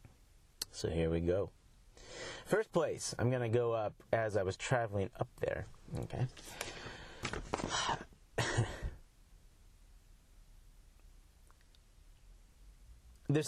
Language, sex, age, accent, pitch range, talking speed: English, male, 30-49, American, 90-125 Hz, 85 wpm